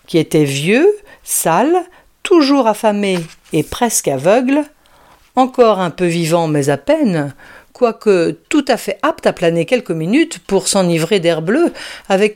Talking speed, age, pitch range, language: 145 wpm, 50-69, 170-245 Hz, French